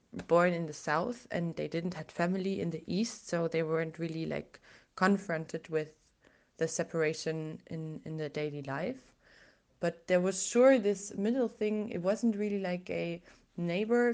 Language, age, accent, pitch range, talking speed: Dutch, 20-39, German, 160-200 Hz, 165 wpm